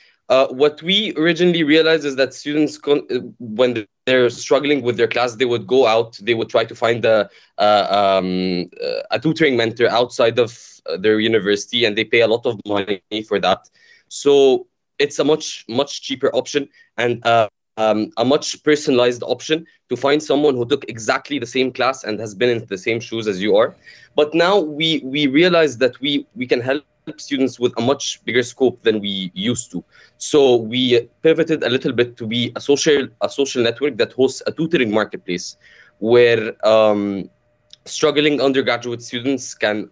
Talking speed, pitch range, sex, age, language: 175 wpm, 115-150 Hz, male, 20-39, English